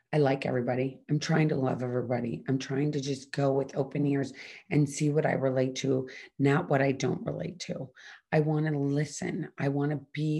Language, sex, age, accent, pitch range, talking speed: English, female, 40-59, American, 140-180 Hz, 210 wpm